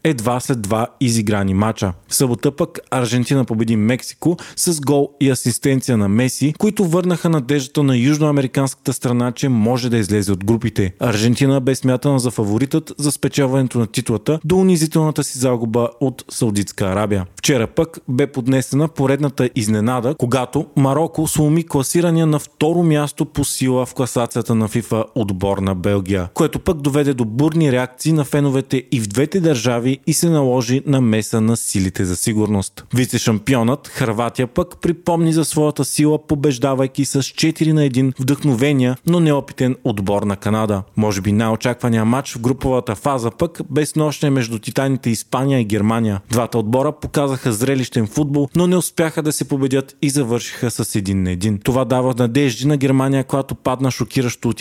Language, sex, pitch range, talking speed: Bulgarian, male, 115-145 Hz, 160 wpm